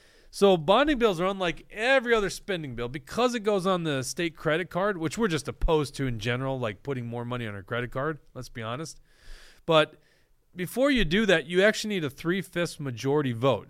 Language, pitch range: English, 125-170 Hz